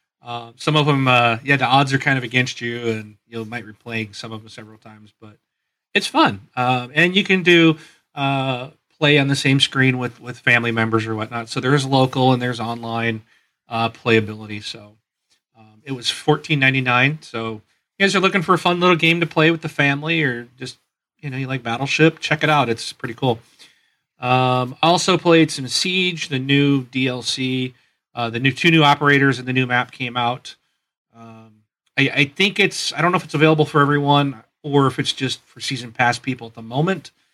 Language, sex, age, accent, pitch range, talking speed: English, male, 40-59, American, 115-145 Hz, 210 wpm